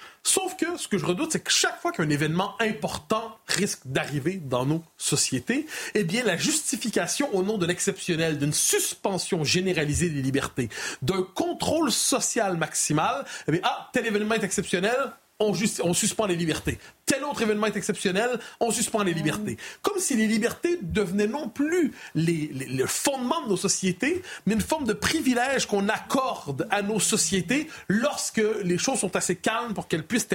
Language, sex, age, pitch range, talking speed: French, male, 40-59, 160-225 Hz, 170 wpm